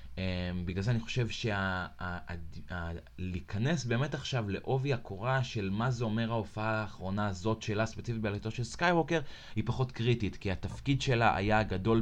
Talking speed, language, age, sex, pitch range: 150 wpm, Hebrew, 20-39, male, 85-110 Hz